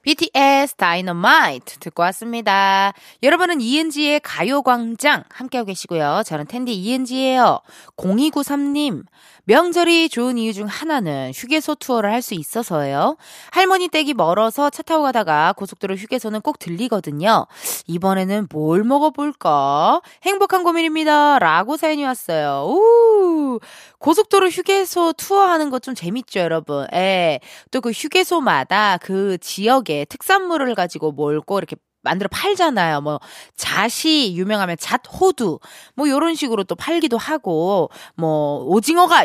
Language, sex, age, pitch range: Korean, female, 20-39, 190-310 Hz